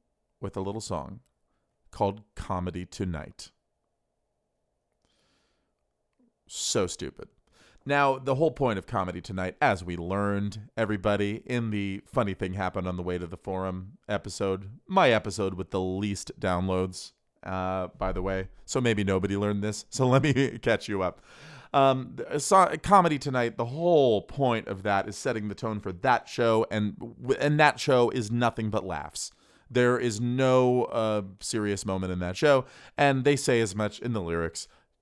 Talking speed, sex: 160 wpm, male